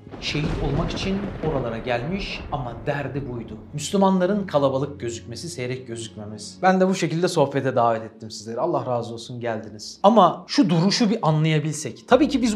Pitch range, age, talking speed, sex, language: 140-225 Hz, 40-59, 160 wpm, male, Turkish